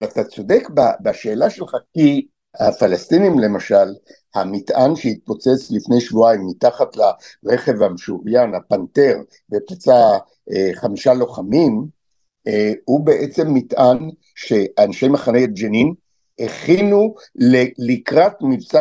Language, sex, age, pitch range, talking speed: Hebrew, male, 60-79, 115-150 Hz, 95 wpm